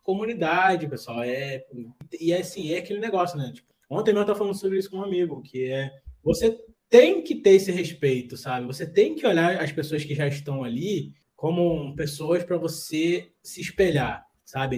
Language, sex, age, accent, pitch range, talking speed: Portuguese, male, 20-39, Brazilian, 130-170 Hz, 185 wpm